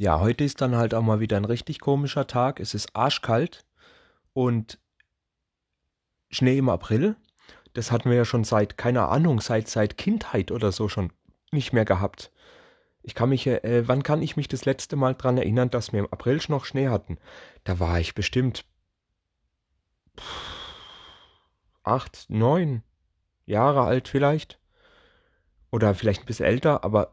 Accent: German